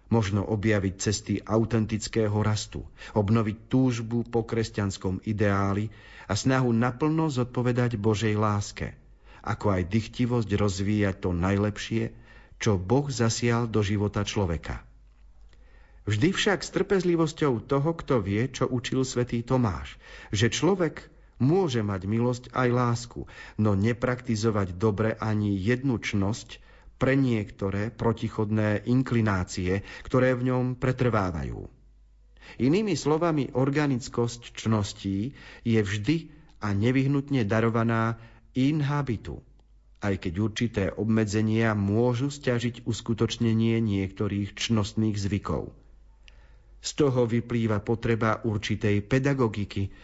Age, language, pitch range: 40-59, Slovak, 105-125 Hz